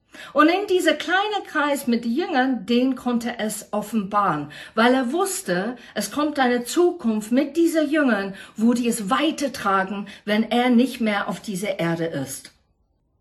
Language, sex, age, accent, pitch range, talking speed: German, female, 50-69, German, 170-260 Hz, 165 wpm